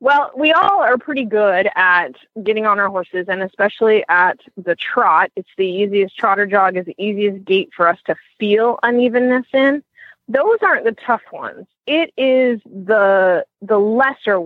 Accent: American